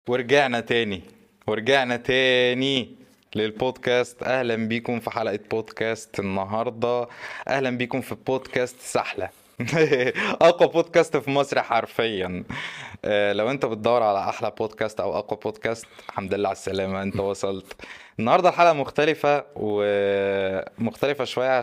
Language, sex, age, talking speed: Arabic, male, 20-39, 115 wpm